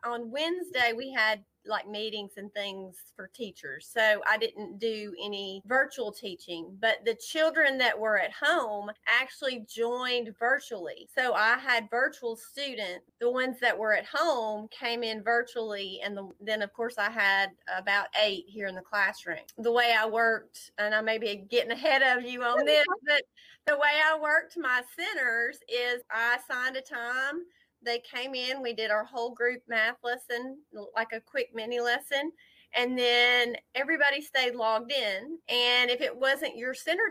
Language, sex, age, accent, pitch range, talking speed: English, female, 30-49, American, 220-265 Hz, 170 wpm